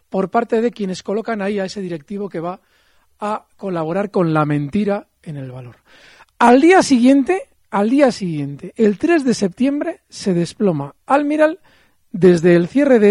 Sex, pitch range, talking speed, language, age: male, 185-275 Hz, 165 wpm, Spanish, 40-59